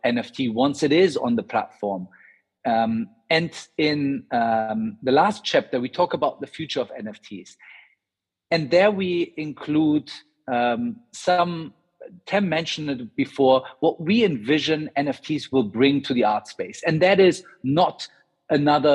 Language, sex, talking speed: English, male, 145 wpm